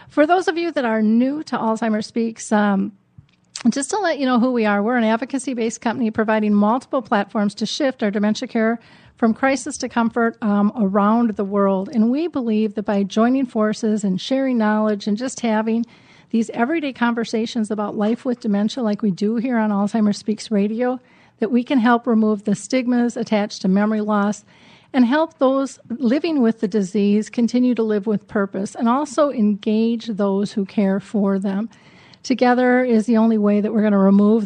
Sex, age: female, 40-59